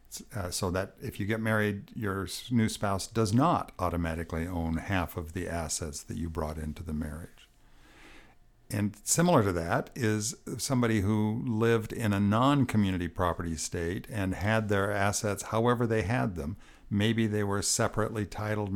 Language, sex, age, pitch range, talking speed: English, male, 60-79, 90-110 Hz, 160 wpm